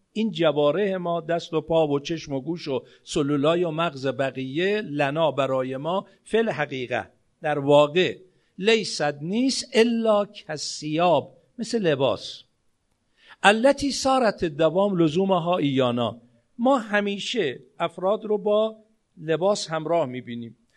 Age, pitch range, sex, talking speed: 50-69, 155-205 Hz, male, 120 wpm